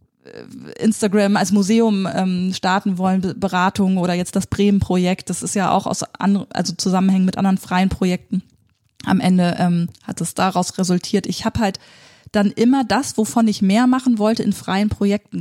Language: German